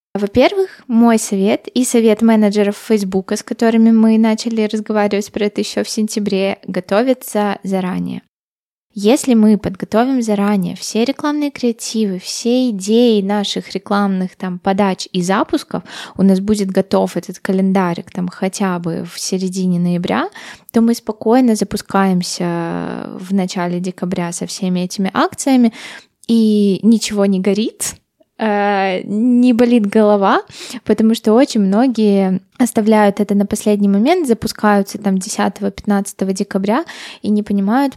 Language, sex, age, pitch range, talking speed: Russian, female, 20-39, 195-230 Hz, 125 wpm